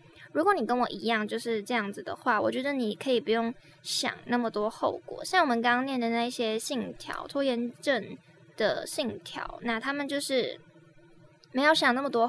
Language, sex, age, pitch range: Chinese, female, 20-39, 225-285 Hz